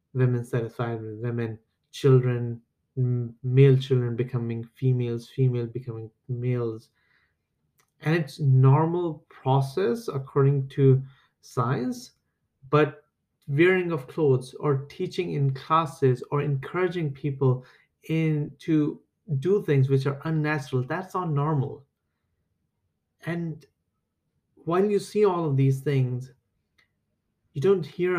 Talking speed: 110 wpm